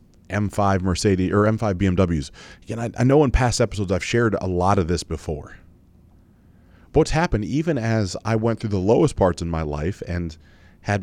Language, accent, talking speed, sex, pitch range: English, American, 190 wpm, male, 85-115 Hz